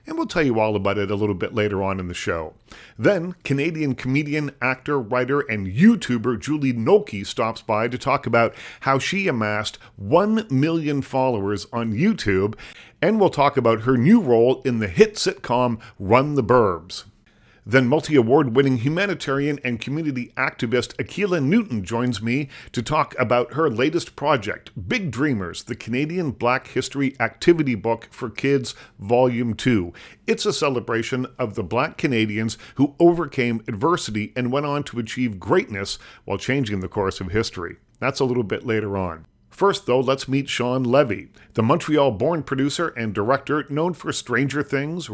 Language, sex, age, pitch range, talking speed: English, male, 40-59, 115-145 Hz, 160 wpm